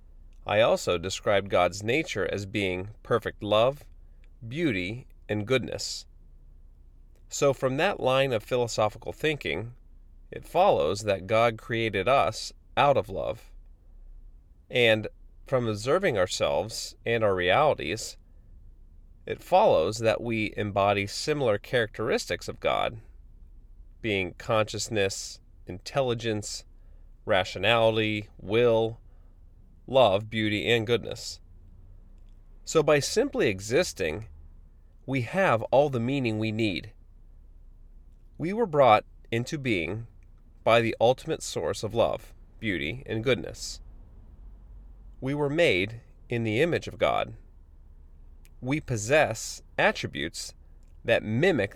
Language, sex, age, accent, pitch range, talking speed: English, male, 30-49, American, 75-115 Hz, 105 wpm